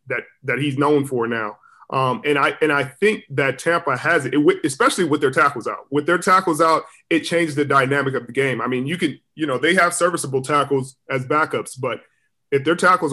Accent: American